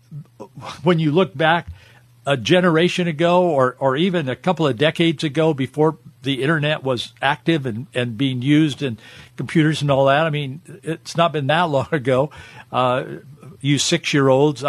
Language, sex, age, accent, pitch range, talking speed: English, male, 50-69, American, 130-175 Hz, 165 wpm